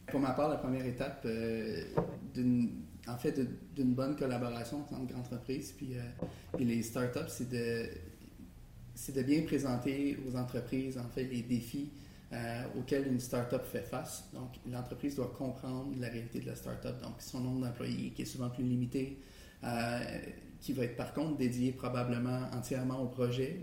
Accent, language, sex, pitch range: Canadian, French, male, 115-130 Hz